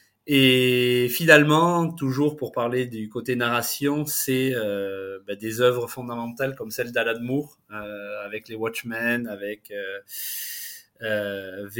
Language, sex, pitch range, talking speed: French, male, 110-130 Hz, 120 wpm